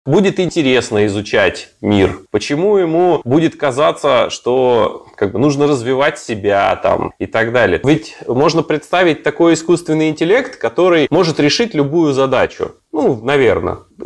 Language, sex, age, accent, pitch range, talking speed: Russian, male, 20-39, native, 125-185 Hz, 120 wpm